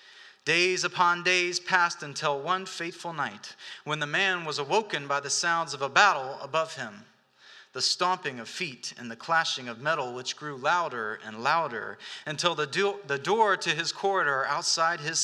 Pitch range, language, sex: 135-175 Hz, English, male